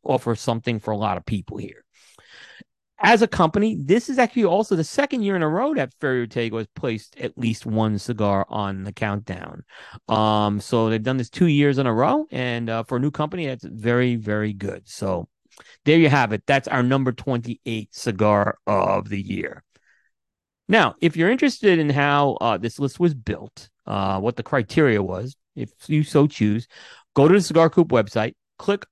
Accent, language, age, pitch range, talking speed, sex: American, English, 40-59, 110-150 Hz, 195 wpm, male